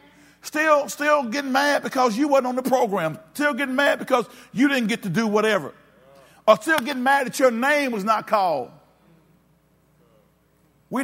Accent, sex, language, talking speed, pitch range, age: American, male, English, 170 wpm, 170-245 Hz, 50-69